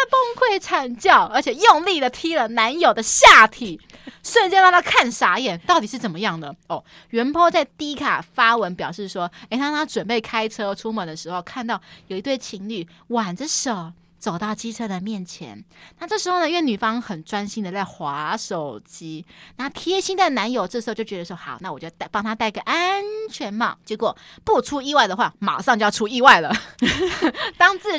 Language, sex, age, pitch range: Chinese, female, 20-39, 205-300 Hz